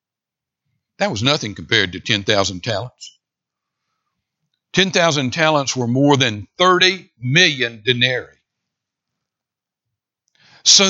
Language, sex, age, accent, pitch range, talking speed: English, male, 60-79, American, 115-155 Hz, 90 wpm